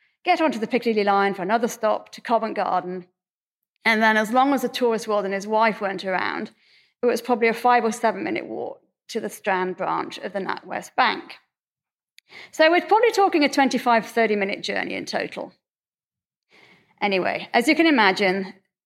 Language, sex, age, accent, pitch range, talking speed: English, female, 30-49, British, 205-260 Hz, 180 wpm